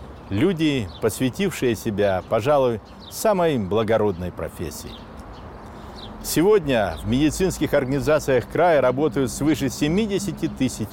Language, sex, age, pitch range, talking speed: Russian, male, 60-79, 90-130 Hz, 90 wpm